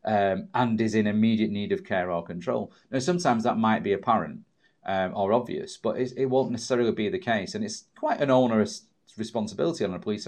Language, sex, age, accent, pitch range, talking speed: English, male, 30-49, British, 90-125 Hz, 205 wpm